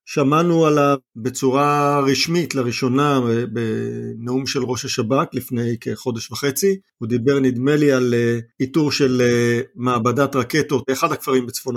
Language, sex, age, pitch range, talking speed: Hebrew, male, 50-69, 125-155 Hz, 120 wpm